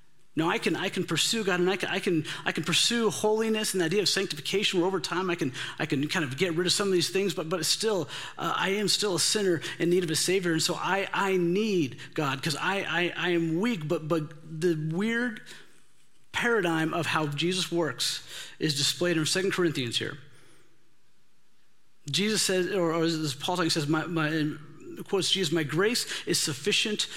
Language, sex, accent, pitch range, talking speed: English, male, American, 150-185 Hz, 205 wpm